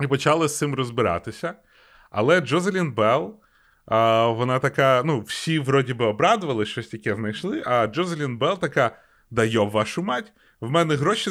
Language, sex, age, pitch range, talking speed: Ukrainian, male, 20-39, 120-160 Hz, 155 wpm